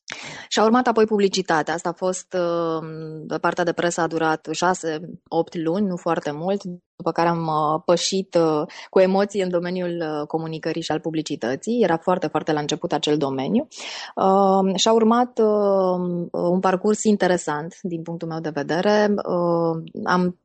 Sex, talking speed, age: female, 140 wpm, 20-39